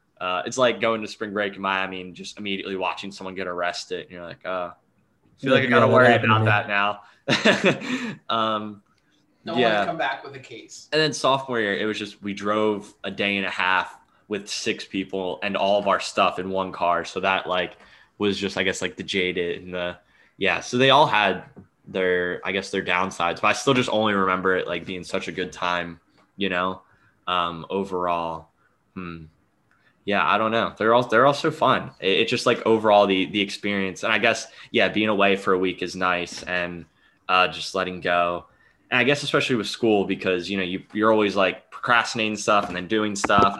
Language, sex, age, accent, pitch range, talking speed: English, male, 10-29, American, 95-105 Hz, 210 wpm